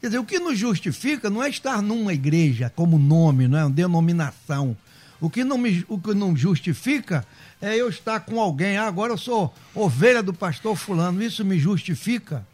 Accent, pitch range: Brazilian, 150-220 Hz